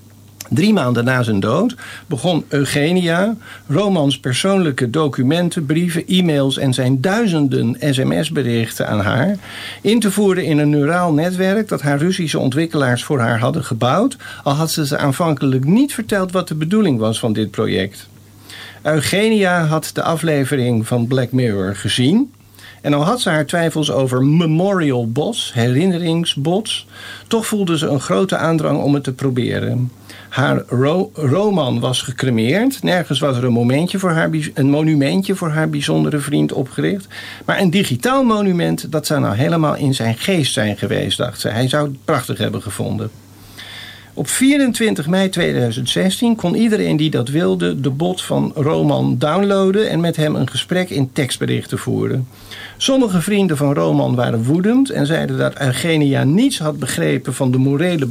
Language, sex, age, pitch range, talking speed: Dutch, male, 50-69, 125-180 Hz, 160 wpm